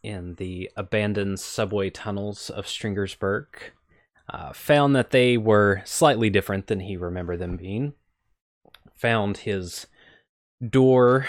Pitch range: 95-115 Hz